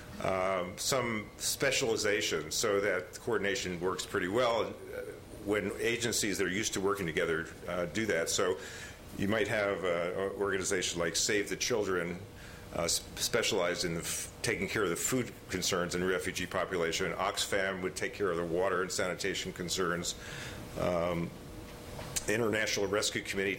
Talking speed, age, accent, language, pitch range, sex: 160 wpm, 50-69, American, English, 95-120 Hz, male